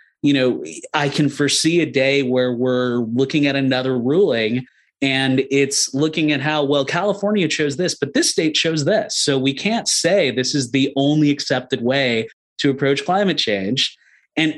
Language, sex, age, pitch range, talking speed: English, male, 30-49, 125-145 Hz, 175 wpm